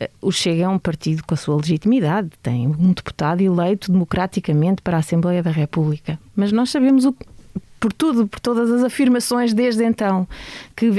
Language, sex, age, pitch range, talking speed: Portuguese, female, 20-39, 190-245 Hz, 180 wpm